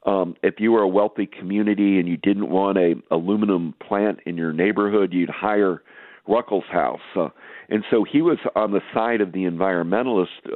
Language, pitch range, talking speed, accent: English, 95-110 Hz, 175 wpm, American